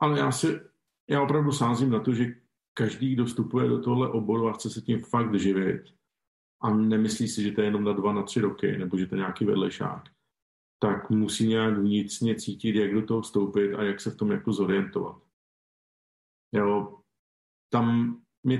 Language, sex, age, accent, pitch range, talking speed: Czech, male, 50-69, native, 105-120 Hz, 185 wpm